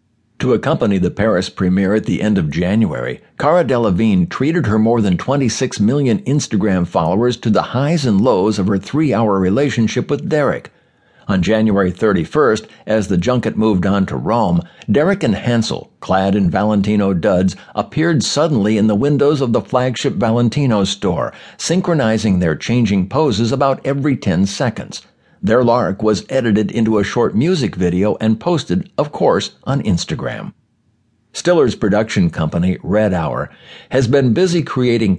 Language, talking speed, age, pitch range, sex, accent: English, 155 wpm, 60-79, 100-135 Hz, male, American